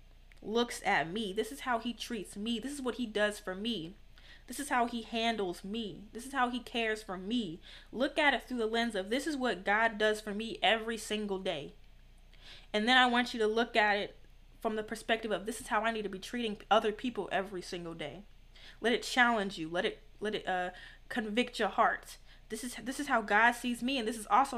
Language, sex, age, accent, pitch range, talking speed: English, female, 20-39, American, 200-235 Hz, 235 wpm